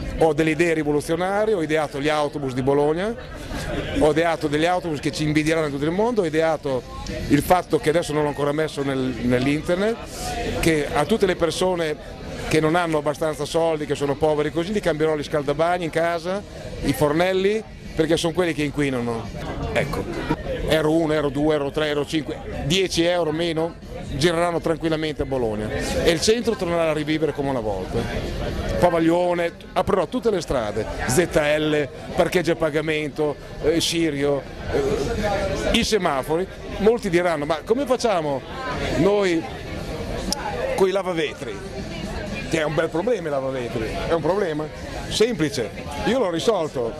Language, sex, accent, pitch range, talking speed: Italian, male, native, 150-175 Hz, 155 wpm